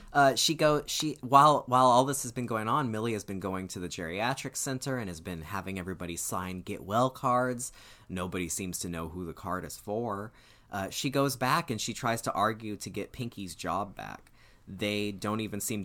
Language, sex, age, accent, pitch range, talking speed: English, male, 30-49, American, 95-125 Hz, 210 wpm